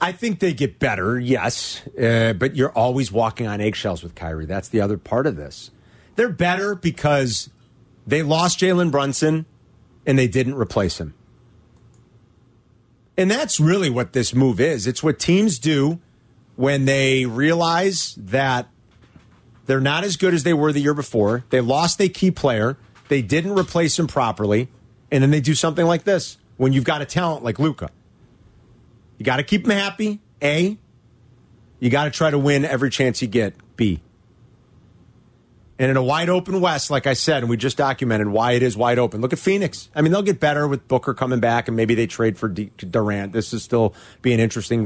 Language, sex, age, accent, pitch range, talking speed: English, male, 40-59, American, 115-155 Hz, 190 wpm